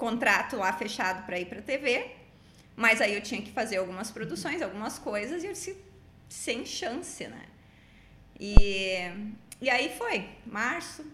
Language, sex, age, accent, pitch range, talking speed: Portuguese, female, 20-39, Brazilian, 205-275 Hz, 155 wpm